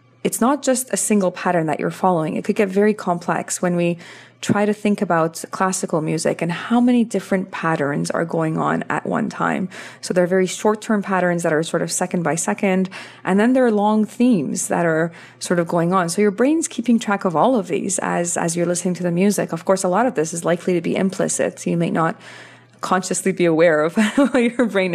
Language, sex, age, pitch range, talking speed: English, female, 20-39, 165-195 Hz, 230 wpm